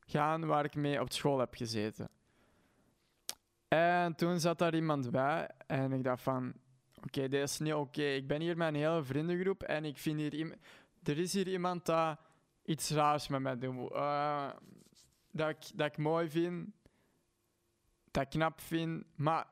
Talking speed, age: 180 wpm, 20-39